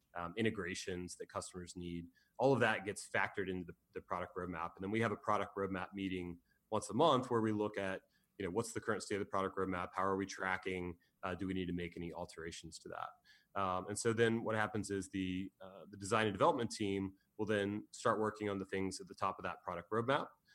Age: 30-49